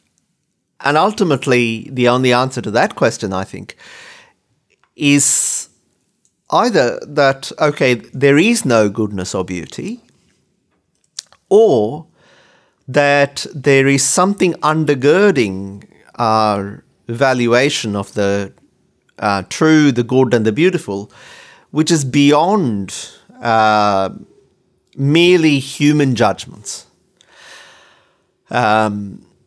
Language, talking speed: English, 90 wpm